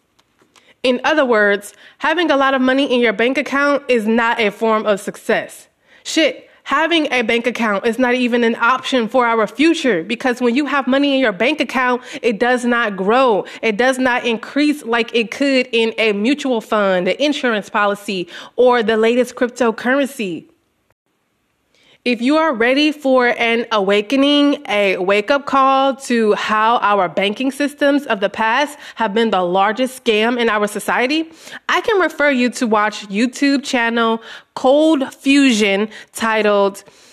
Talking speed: 160 wpm